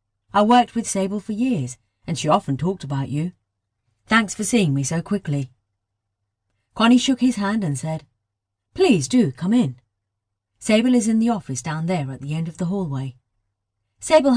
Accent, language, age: British, English, 40-59